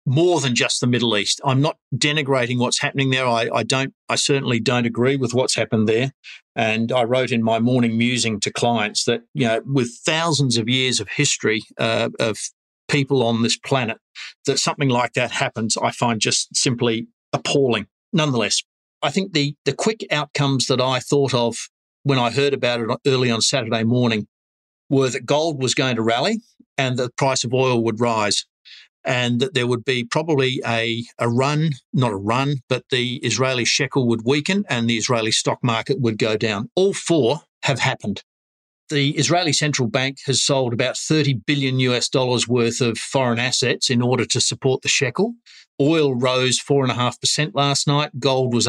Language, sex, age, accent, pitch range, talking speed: English, male, 50-69, Australian, 120-140 Hz, 185 wpm